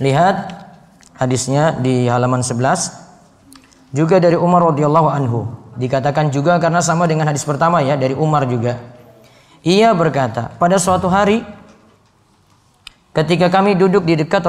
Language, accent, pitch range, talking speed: Indonesian, native, 135-185 Hz, 130 wpm